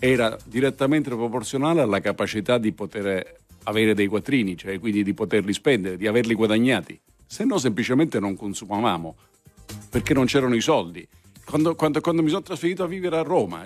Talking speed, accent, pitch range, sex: 165 wpm, native, 115-160 Hz, male